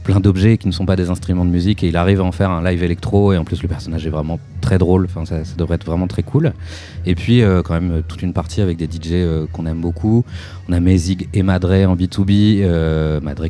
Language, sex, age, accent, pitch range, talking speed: French, male, 30-49, French, 85-100 Hz, 260 wpm